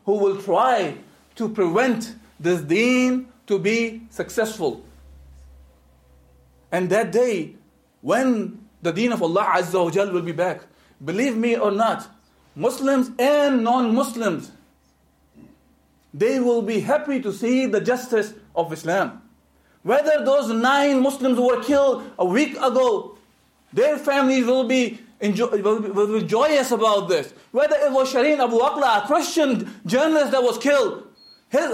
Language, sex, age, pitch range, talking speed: English, male, 50-69, 210-270 Hz, 135 wpm